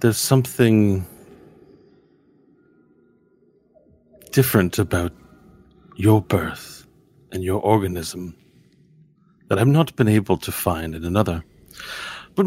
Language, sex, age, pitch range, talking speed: English, male, 40-59, 90-130 Hz, 90 wpm